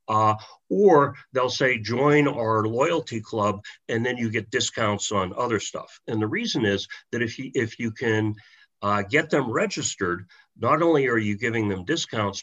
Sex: male